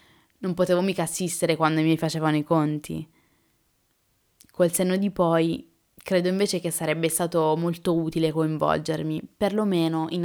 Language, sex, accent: Italian, female, native